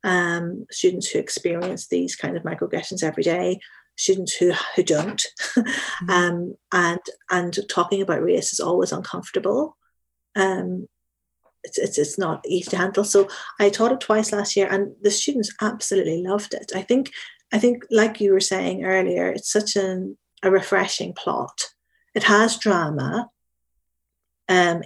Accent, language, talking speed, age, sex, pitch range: British, English, 150 wpm, 40-59, female, 180-210 Hz